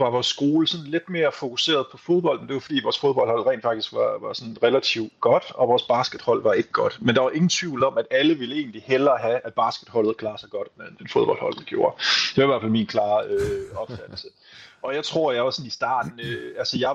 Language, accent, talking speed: Danish, native, 235 wpm